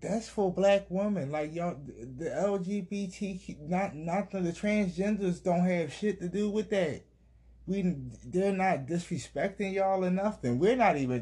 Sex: male